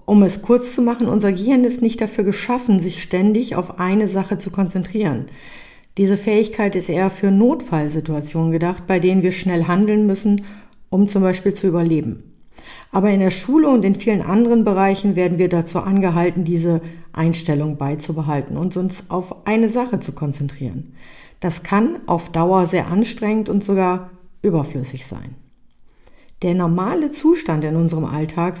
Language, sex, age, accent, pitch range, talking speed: German, female, 50-69, German, 175-210 Hz, 155 wpm